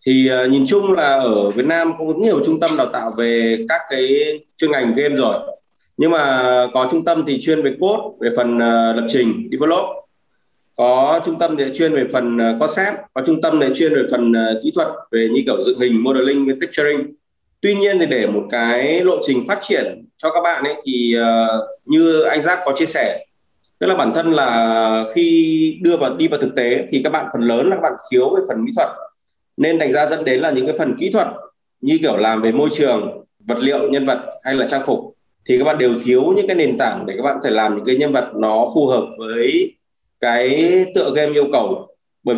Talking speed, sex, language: 225 wpm, male, Vietnamese